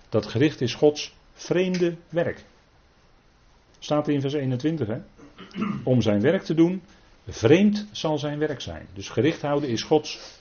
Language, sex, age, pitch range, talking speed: Dutch, male, 40-59, 100-145 Hz, 155 wpm